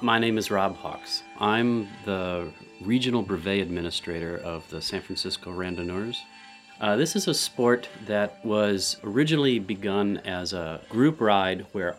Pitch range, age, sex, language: 85-105 Hz, 40-59, male, English